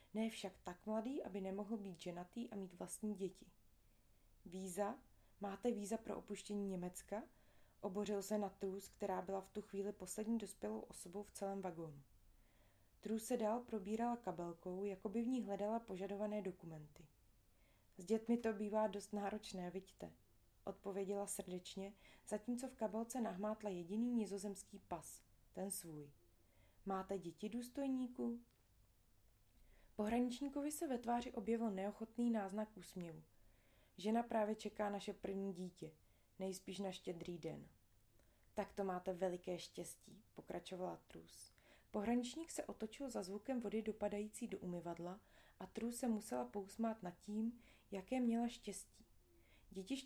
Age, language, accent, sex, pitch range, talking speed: 20-39, Czech, native, female, 175-220 Hz, 135 wpm